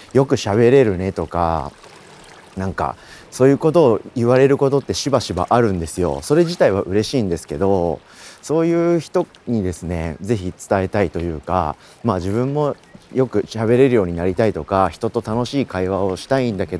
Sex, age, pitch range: male, 40-59, 90-140 Hz